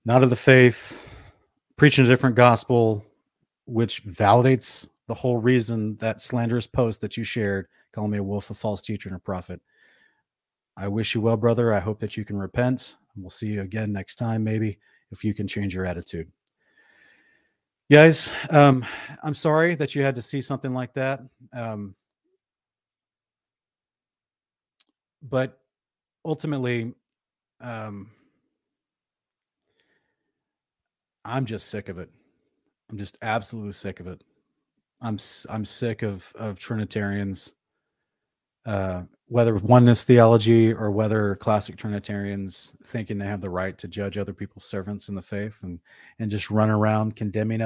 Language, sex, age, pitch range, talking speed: English, male, 30-49, 100-120 Hz, 145 wpm